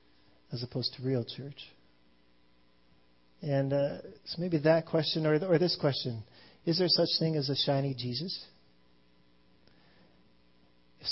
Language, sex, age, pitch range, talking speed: English, male, 40-59, 125-155 Hz, 130 wpm